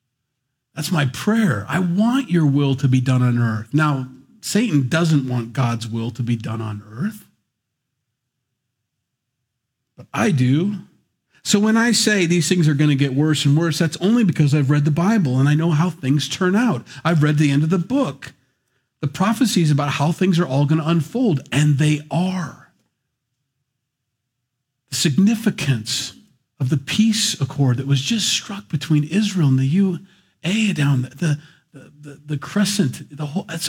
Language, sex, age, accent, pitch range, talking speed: English, male, 40-59, American, 130-190 Hz, 175 wpm